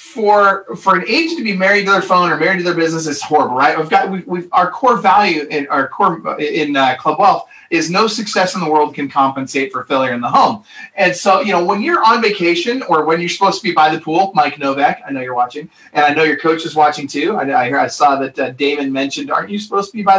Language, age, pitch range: English, 30-49, 145-205 Hz